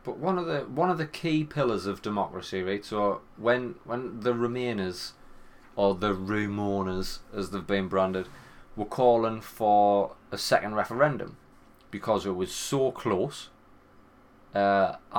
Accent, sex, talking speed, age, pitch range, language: British, male, 145 wpm, 20-39, 100-135 Hz, English